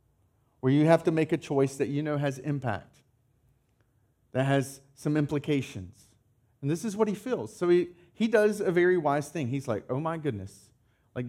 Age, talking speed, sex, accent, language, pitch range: 40-59, 190 wpm, male, American, English, 125-185 Hz